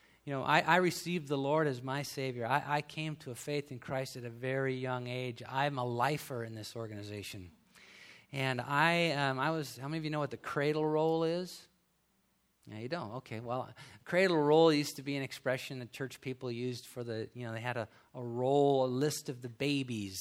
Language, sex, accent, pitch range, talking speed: English, male, American, 120-160 Hz, 225 wpm